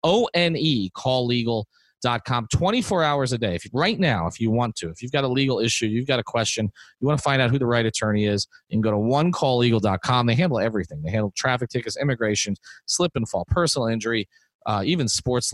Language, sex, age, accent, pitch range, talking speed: English, male, 30-49, American, 105-140 Hz, 210 wpm